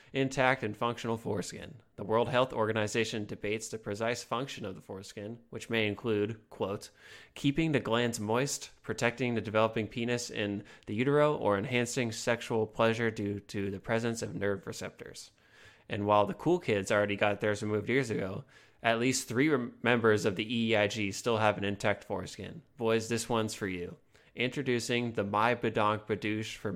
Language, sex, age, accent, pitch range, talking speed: English, male, 20-39, American, 105-125 Hz, 165 wpm